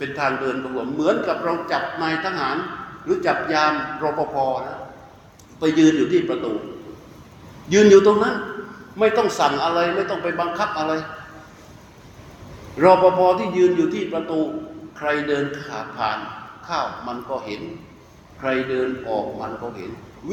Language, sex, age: Thai, male, 60-79